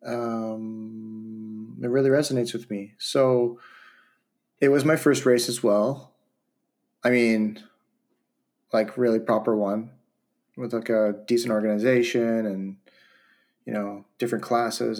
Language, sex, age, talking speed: English, male, 30-49, 120 wpm